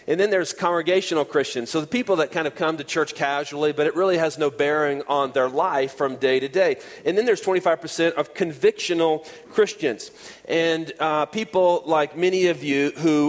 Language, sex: English, male